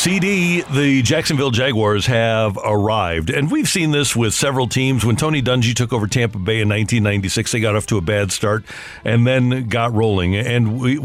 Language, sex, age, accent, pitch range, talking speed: English, male, 50-69, American, 115-140 Hz, 190 wpm